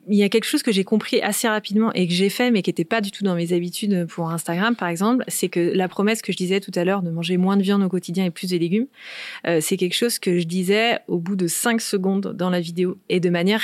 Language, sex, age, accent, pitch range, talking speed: French, female, 30-49, French, 175-215 Hz, 290 wpm